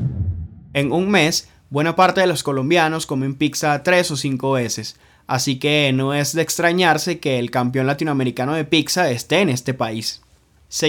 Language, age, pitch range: Spanish, 20-39, 130-165 Hz